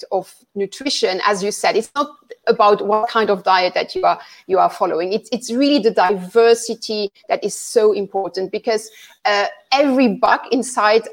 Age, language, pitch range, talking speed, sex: 30-49, English, 200-260 Hz, 175 wpm, female